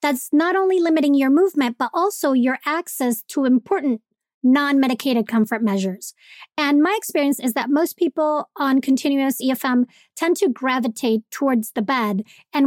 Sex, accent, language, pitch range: female, American, English, 245-300 Hz